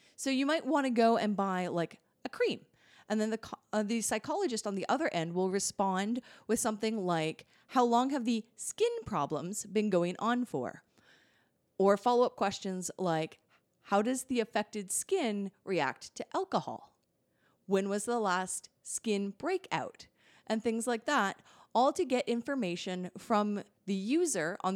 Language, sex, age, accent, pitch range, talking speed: English, female, 30-49, American, 180-235 Hz, 160 wpm